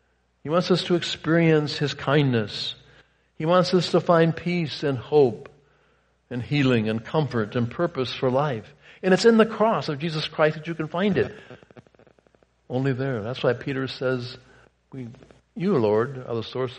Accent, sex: American, male